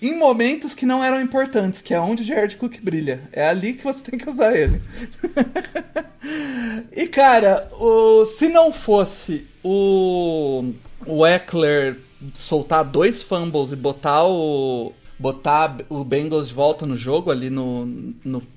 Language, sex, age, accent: Portuguese, male, 30-49, Brazilian